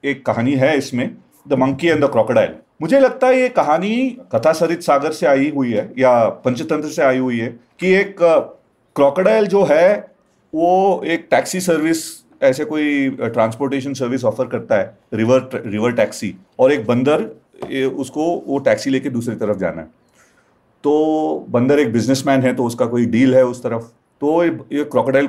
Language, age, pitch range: Hindi, 40-59, 120-160 Hz